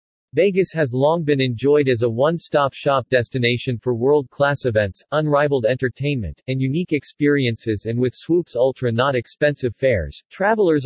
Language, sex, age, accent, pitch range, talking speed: English, male, 40-59, American, 120-150 Hz, 135 wpm